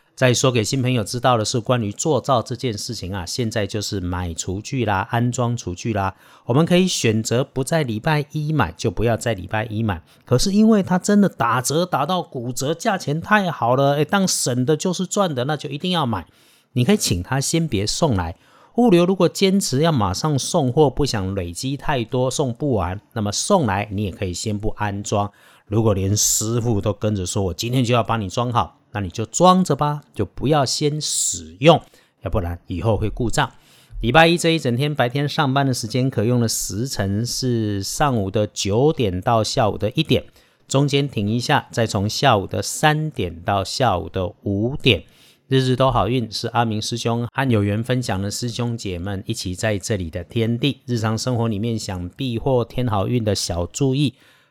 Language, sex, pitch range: Chinese, male, 105-140 Hz